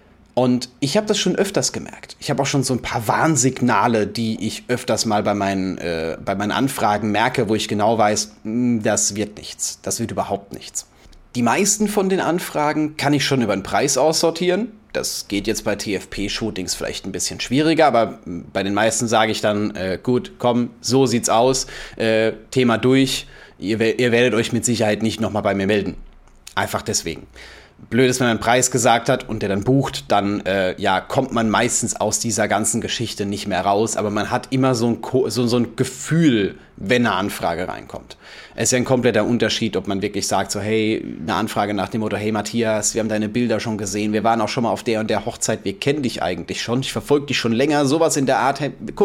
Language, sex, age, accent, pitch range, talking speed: German, male, 30-49, German, 105-130 Hz, 210 wpm